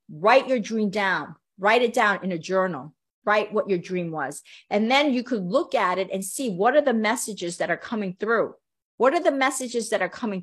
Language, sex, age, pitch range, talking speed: English, female, 40-59, 195-260 Hz, 225 wpm